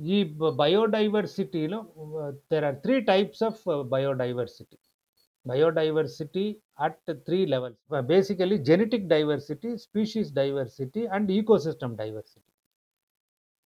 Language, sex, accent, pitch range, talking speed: Telugu, male, native, 145-200 Hz, 80 wpm